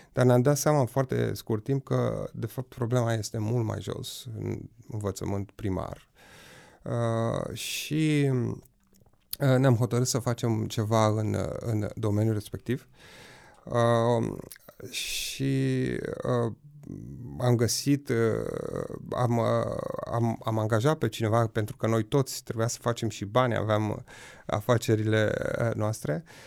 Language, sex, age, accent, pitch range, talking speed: Romanian, male, 30-49, native, 110-130 Hz, 125 wpm